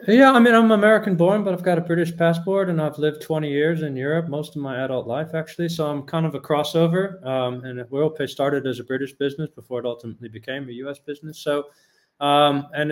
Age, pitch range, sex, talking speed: 20-39, 130-160 Hz, male, 230 wpm